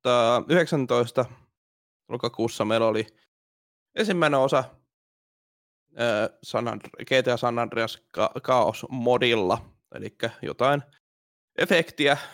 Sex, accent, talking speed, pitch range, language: male, native, 85 wpm, 115-135 Hz, Finnish